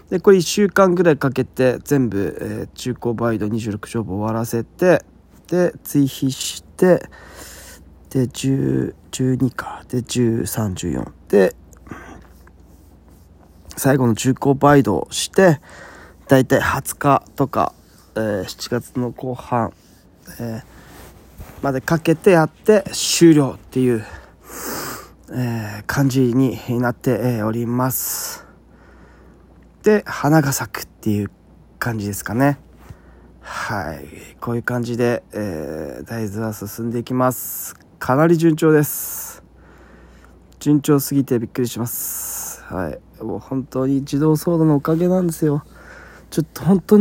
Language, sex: Japanese, male